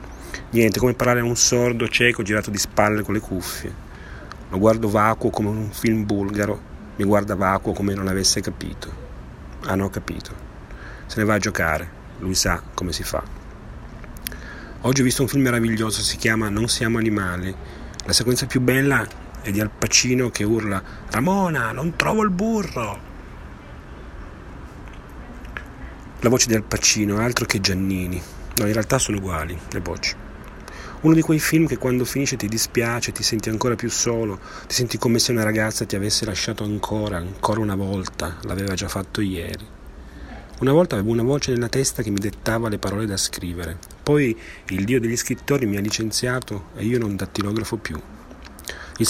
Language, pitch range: Italian, 95-120 Hz